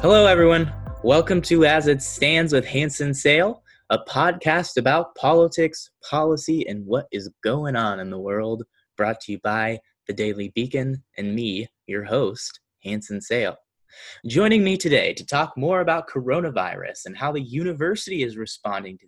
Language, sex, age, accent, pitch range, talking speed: English, male, 20-39, American, 110-155 Hz, 160 wpm